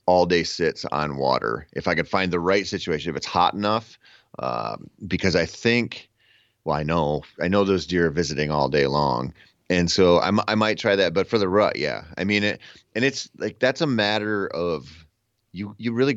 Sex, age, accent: male, 30-49, American